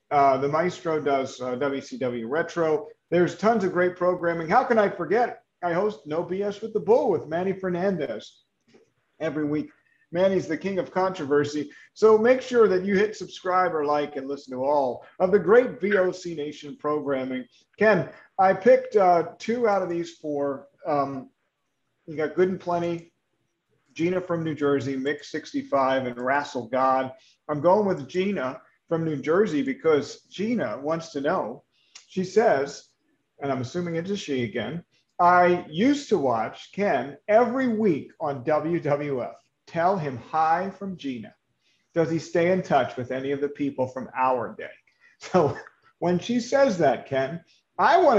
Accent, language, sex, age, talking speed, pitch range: American, English, male, 40-59, 165 wpm, 145-200 Hz